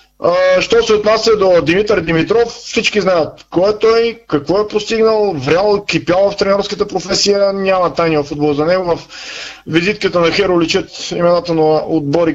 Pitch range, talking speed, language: 160-205 Hz, 155 wpm, Bulgarian